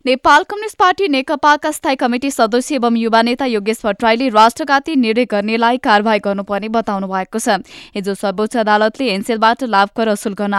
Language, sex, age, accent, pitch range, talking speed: English, female, 20-39, Indian, 215-270 Hz, 165 wpm